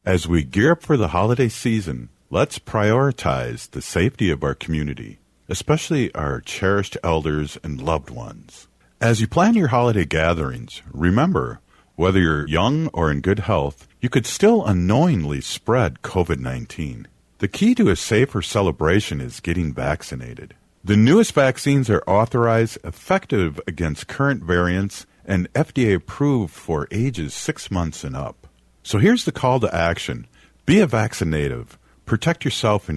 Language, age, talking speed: English, 50-69, 145 wpm